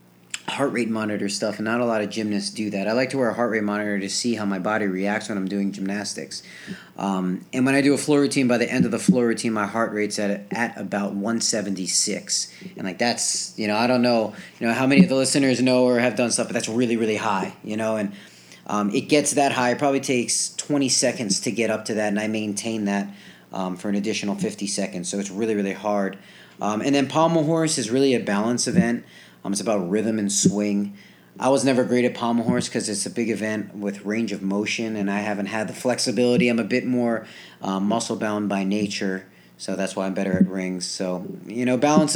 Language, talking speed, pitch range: English, 240 wpm, 100-125 Hz